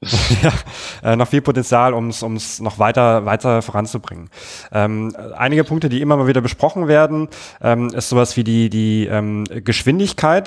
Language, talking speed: German, 155 wpm